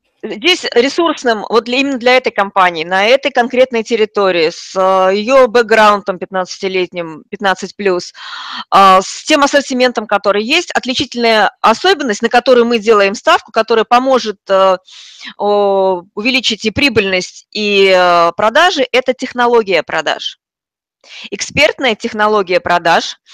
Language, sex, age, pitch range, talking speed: Russian, female, 30-49, 195-255 Hz, 105 wpm